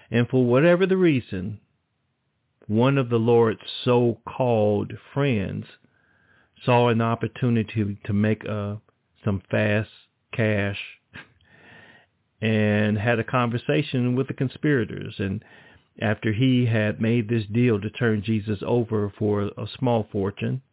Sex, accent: male, American